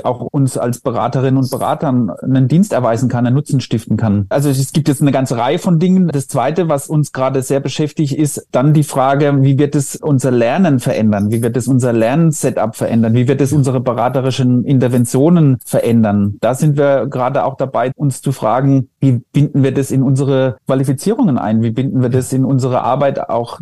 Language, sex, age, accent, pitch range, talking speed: German, male, 30-49, German, 125-145 Hz, 200 wpm